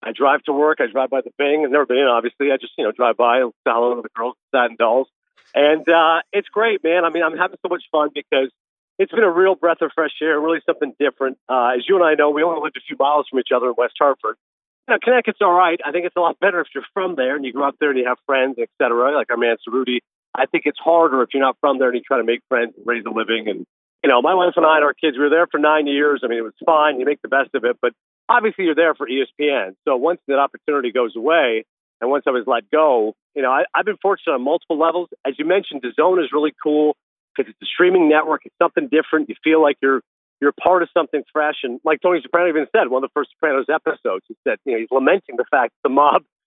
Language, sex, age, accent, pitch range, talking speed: English, male, 50-69, American, 135-175 Hz, 285 wpm